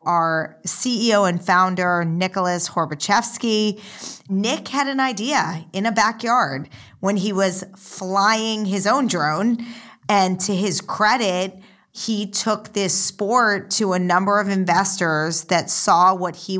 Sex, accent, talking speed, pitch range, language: female, American, 135 wpm, 175-210 Hz, English